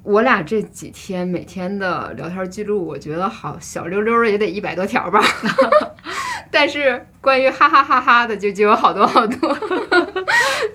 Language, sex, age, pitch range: Chinese, female, 10-29, 185-260 Hz